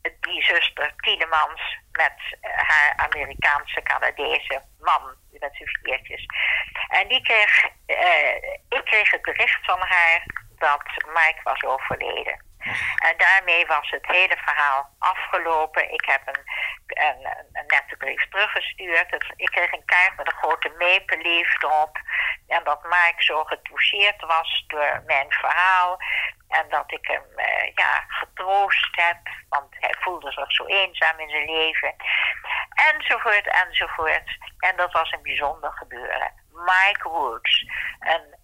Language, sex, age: Dutch, female, 60-79